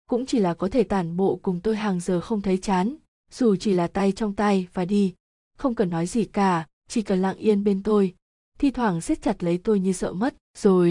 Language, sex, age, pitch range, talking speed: Vietnamese, female, 20-39, 185-220 Hz, 235 wpm